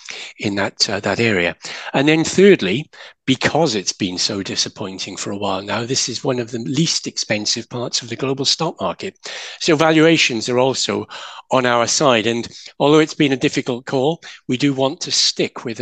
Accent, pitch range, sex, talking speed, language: British, 115-140 Hz, male, 190 wpm, English